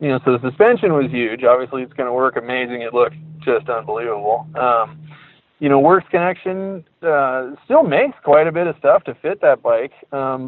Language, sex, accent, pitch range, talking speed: English, male, American, 120-145 Hz, 200 wpm